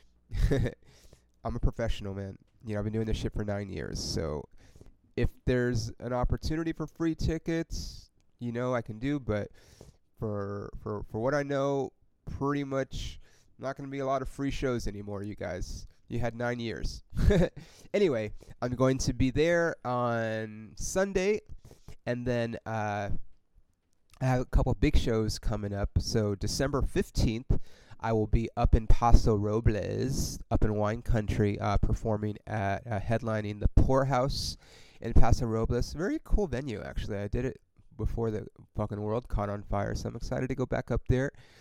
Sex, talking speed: male, 170 wpm